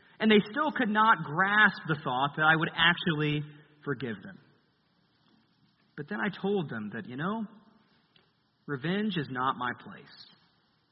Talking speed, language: 150 wpm, English